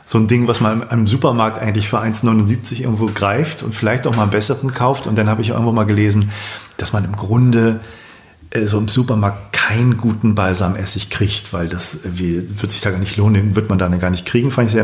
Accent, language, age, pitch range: German, German, 40-59, 105-125 Hz